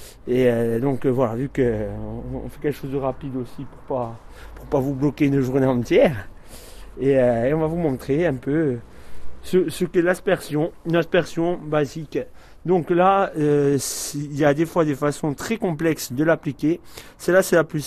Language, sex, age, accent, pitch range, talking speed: French, male, 30-49, French, 125-170 Hz, 195 wpm